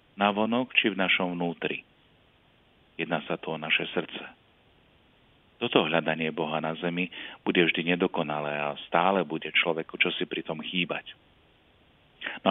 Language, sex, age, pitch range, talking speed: Slovak, male, 40-59, 80-100 Hz, 135 wpm